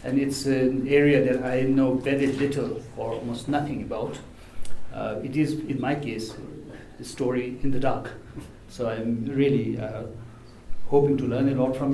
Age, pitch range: 60-79, 120-150 Hz